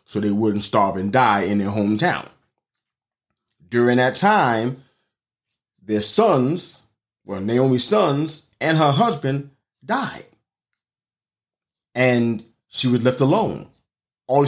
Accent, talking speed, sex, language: American, 110 wpm, male, English